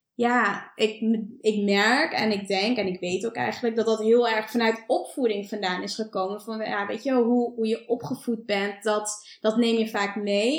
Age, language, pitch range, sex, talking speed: 20-39, Dutch, 205-235 Hz, female, 205 wpm